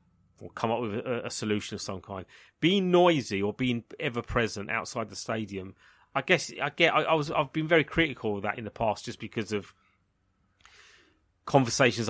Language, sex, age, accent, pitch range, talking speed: English, male, 30-49, British, 100-135 Hz, 190 wpm